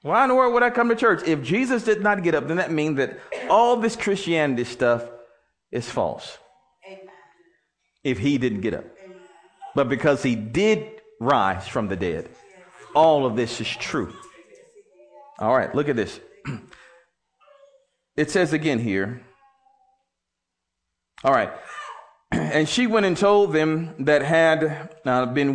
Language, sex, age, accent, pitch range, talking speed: English, male, 40-59, American, 145-220 Hz, 150 wpm